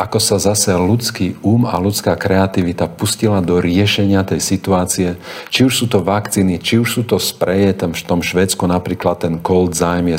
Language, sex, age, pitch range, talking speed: Slovak, male, 50-69, 85-100 Hz, 190 wpm